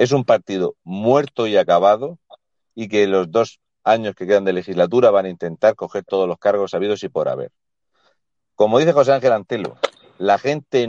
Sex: male